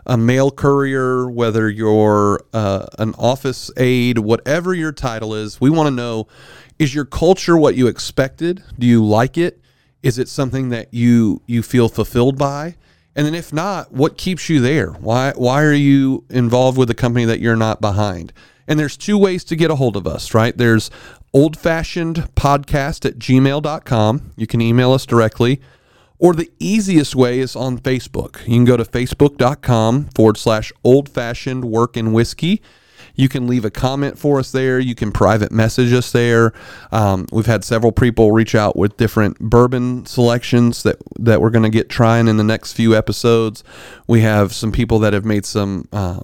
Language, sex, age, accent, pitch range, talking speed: English, male, 40-59, American, 110-135 Hz, 185 wpm